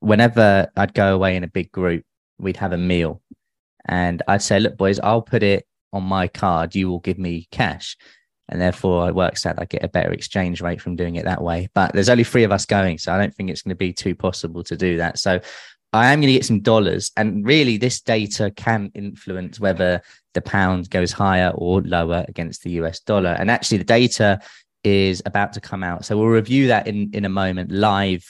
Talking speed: 225 wpm